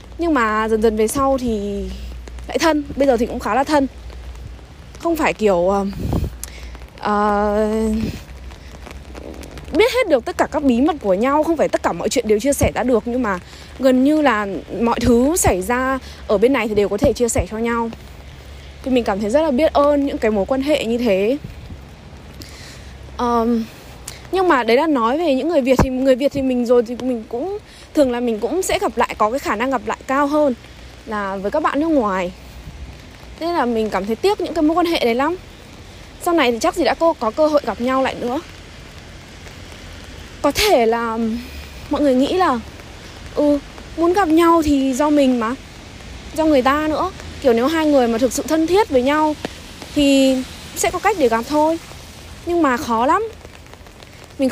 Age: 20-39